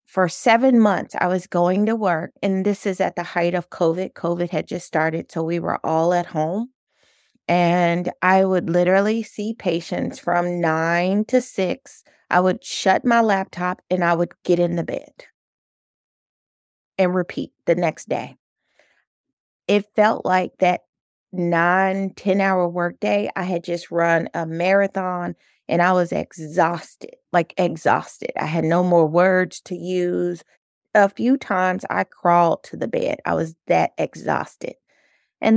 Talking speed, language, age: 160 wpm, English, 30-49